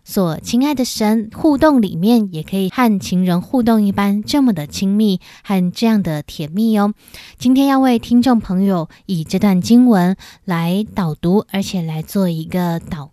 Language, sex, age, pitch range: Chinese, female, 20-39, 175-230 Hz